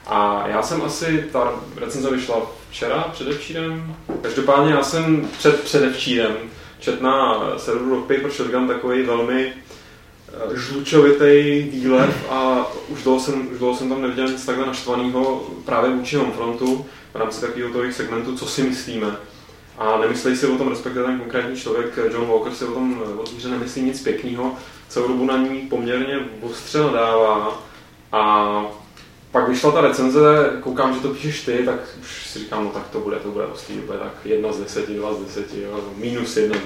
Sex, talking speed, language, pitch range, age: male, 165 wpm, Czech, 115-140 Hz, 20-39